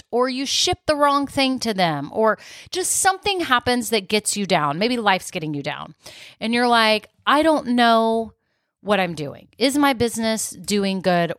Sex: female